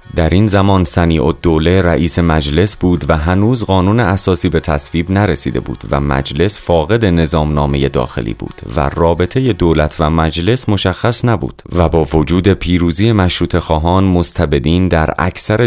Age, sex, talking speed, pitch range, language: 30-49, male, 145 wpm, 80-95 Hz, Persian